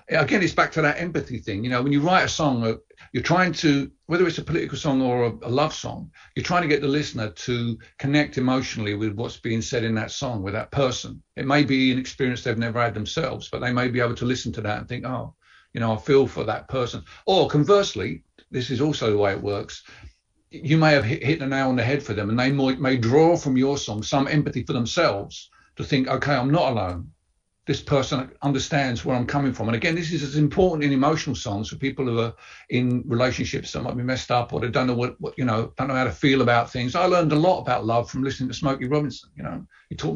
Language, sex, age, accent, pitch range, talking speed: English, male, 50-69, British, 115-145 Hz, 255 wpm